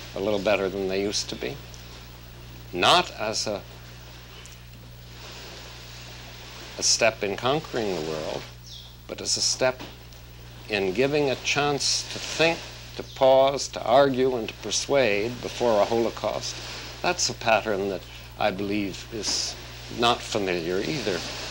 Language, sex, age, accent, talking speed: Russian, male, 60-79, American, 130 wpm